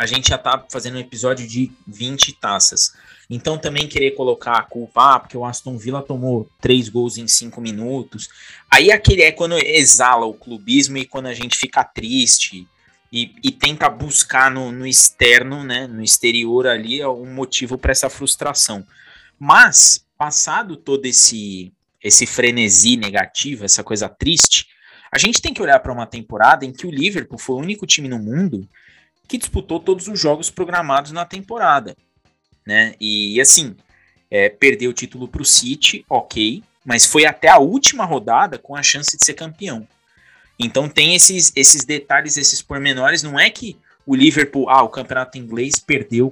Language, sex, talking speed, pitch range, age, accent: Portuguese, male, 170 wpm, 115-145 Hz, 20-39, Brazilian